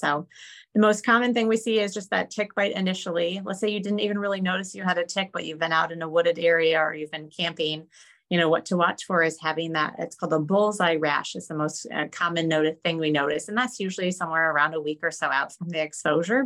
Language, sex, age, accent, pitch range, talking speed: English, female, 30-49, American, 155-195 Hz, 260 wpm